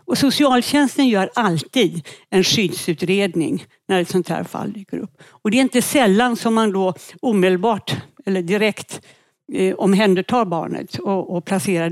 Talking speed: 150 wpm